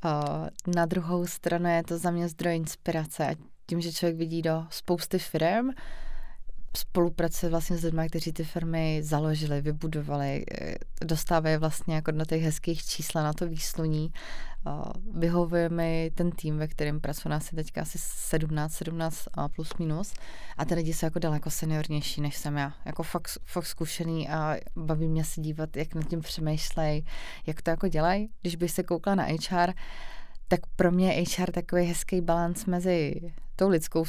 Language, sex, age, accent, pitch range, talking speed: Czech, female, 20-39, native, 160-175 Hz, 170 wpm